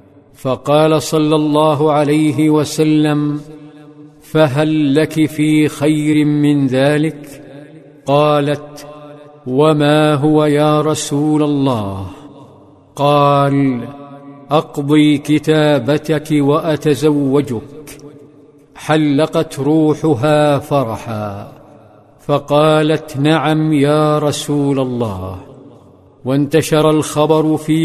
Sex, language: male, Arabic